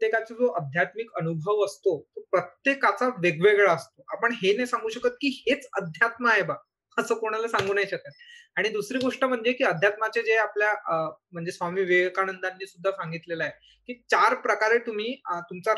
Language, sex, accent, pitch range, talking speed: Marathi, male, native, 185-250 Hz, 170 wpm